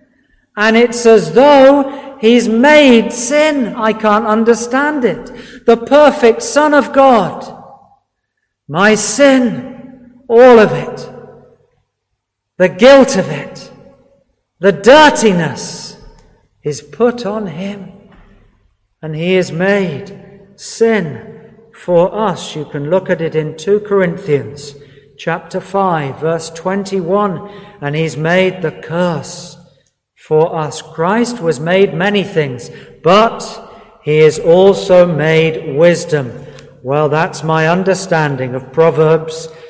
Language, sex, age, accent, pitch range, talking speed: English, male, 50-69, British, 160-225 Hz, 110 wpm